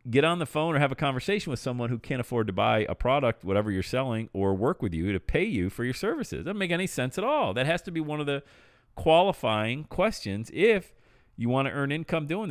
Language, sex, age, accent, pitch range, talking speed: English, male, 40-59, American, 95-145 Hz, 250 wpm